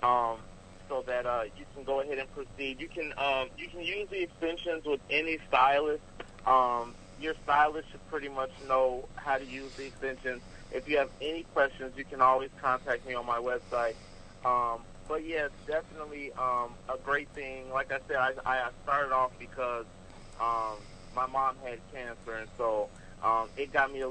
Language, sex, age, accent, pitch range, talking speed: English, male, 40-59, American, 115-145 Hz, 185 wpm